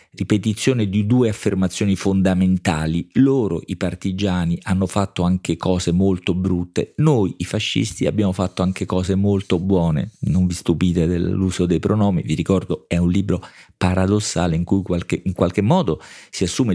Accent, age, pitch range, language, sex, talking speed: native, 40-59, 90-100 Hz, Italian, male, 150 wpm